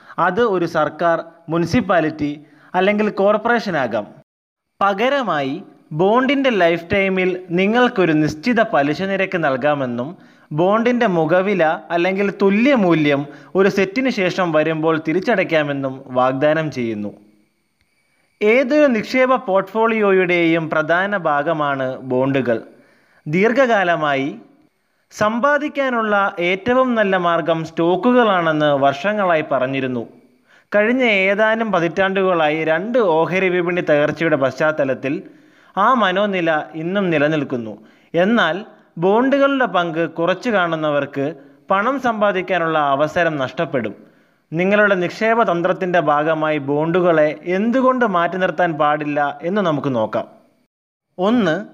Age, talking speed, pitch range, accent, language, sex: 20-39, 85 wpm, 150-205 Hz, native, Malayalam, male